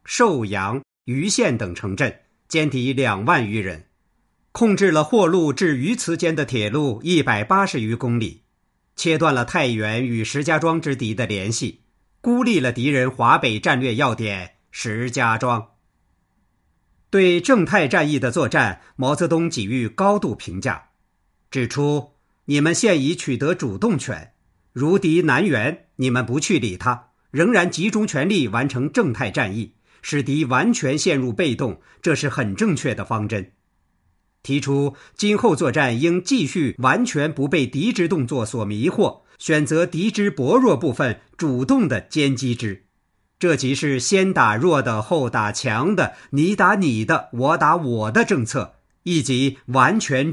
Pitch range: 115-165 Hz